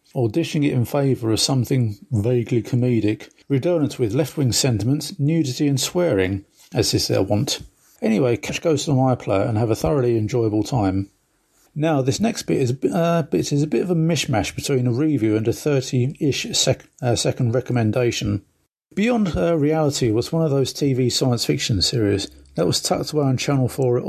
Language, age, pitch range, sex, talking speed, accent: English, 50-69, 120-150 Hz, male, 185 wpm, British